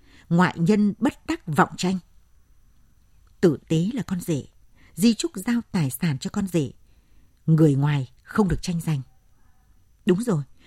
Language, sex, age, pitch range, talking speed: Vietnamese, female, 60-79, 135-200 Hz, 150 wpm